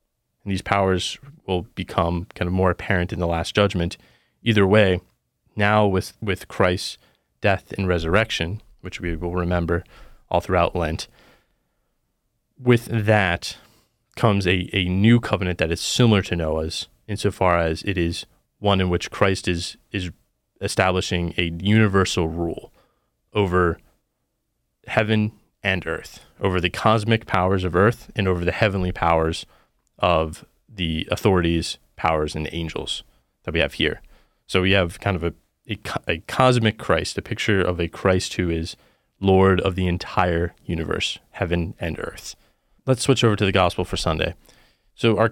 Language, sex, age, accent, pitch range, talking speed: English, male, 30-49, American, 85-105 Hz, 150 wpm